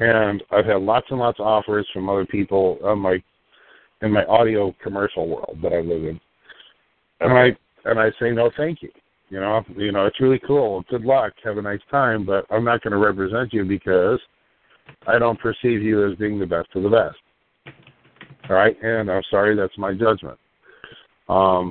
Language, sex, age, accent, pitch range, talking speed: English, male, 50-69, American, 95-115 Hz, 195 wpm